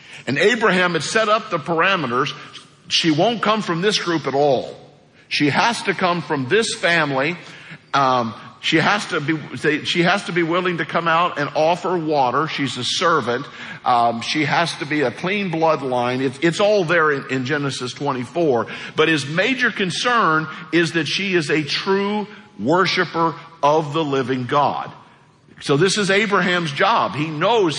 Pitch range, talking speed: 140-180 Hz, 170 wpm